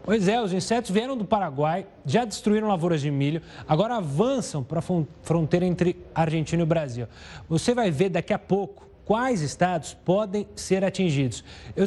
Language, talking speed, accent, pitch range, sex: Portuguese, 165 wpm, Brazilian, 155-205 Hz, male